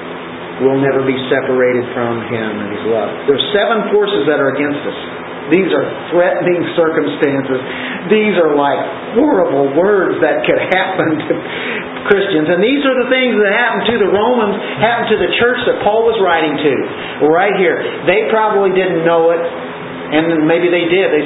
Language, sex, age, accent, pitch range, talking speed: English, male, 50-69, American, 135-190 Hz, 180 wpm